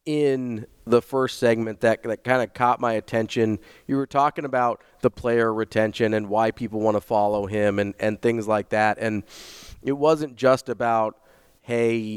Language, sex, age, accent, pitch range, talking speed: English, male, 30-49, American, 110-130 Hz, 180 wpm